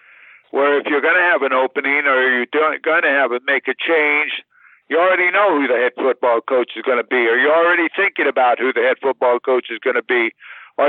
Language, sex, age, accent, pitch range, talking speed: English, male, 50-69, American, 130-165 Hz, 250 wpm